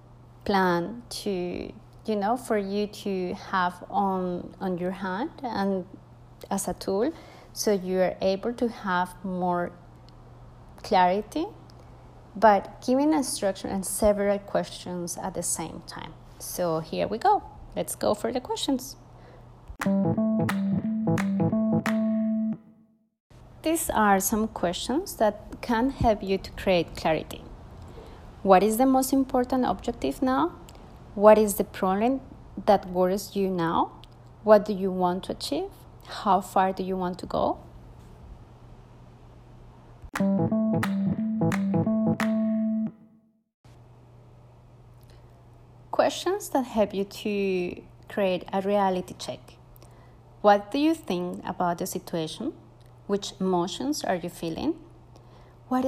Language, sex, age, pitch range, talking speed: English, female, 30-49, 175-220 Hz, 115 wpm